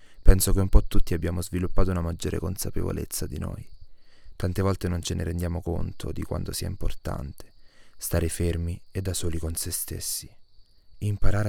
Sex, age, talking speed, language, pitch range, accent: male, 20-39, 165 wpm, Italian, 90-100 Hz, native